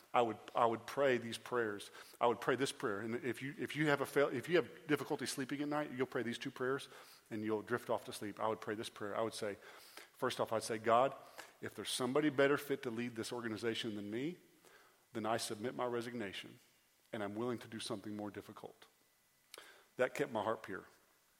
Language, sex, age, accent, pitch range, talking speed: English, male, 40-59, American, 115-180 Hz, 225 wpm